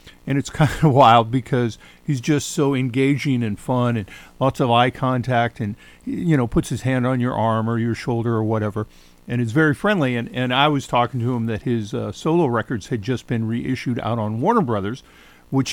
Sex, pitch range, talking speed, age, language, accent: male, 110-140 Hz, 215 wpm, 50-69, English, American